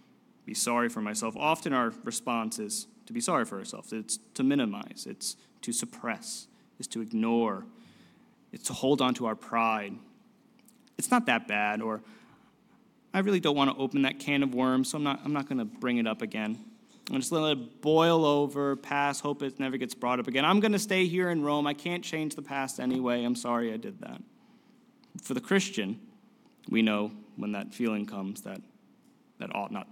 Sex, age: male, 20-39